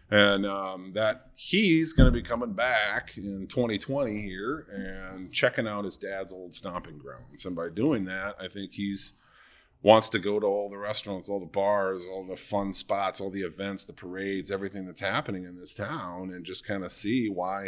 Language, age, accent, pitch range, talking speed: English, 30-49, American, 95-110 Hz, 195 wpm